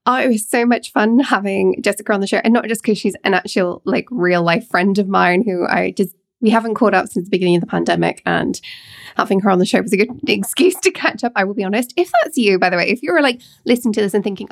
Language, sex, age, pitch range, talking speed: English, female, 20-39, 190-245 Hz, 280 wpm